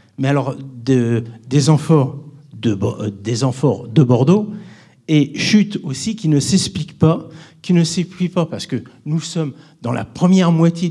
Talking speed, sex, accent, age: 160 wpm, male, French, 50-69